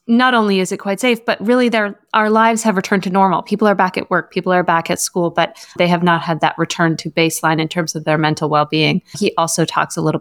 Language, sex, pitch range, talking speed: English, female, 165-200 Hz, 265 wpm